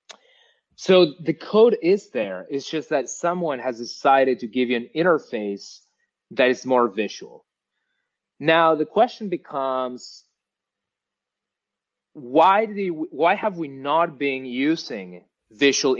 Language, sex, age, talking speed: English, male, 30-49, 130 wpm